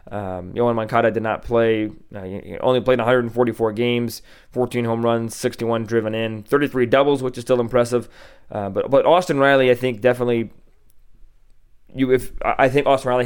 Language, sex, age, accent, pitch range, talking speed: English, male, 20-39, American, 110-125 Hz, 175 wpm